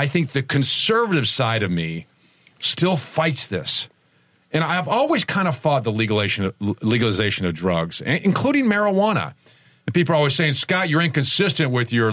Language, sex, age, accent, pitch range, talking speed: English, male, 50-69, American, 105-145 Hz, 165 wpm